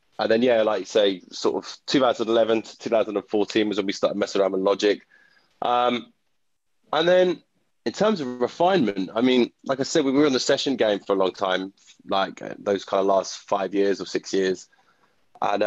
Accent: British